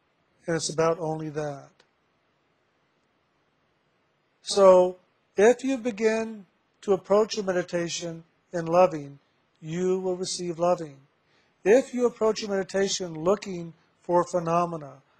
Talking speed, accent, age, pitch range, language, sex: 105 wpm, American, 50-69, 165-195 Hz, English, male